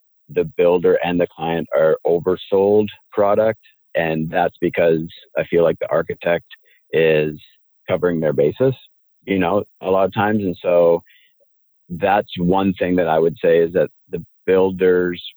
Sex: male